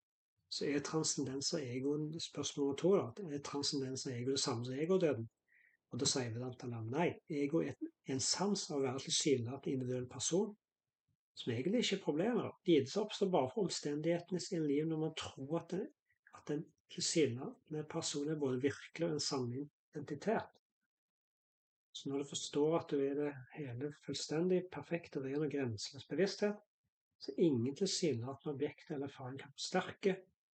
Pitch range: 140-170 Hz